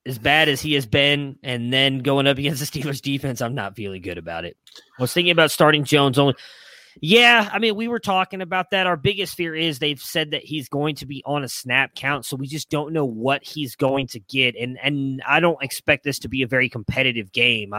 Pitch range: 125-155 Hz